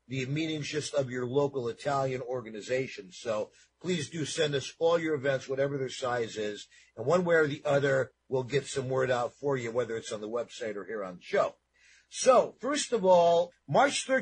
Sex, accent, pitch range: male, American, 140-190 Hz